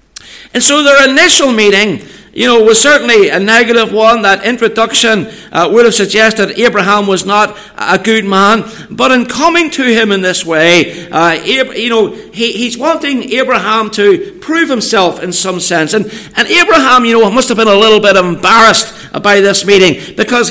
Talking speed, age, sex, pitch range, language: 180 wpm, 60-79, male, 195-250 Hz, English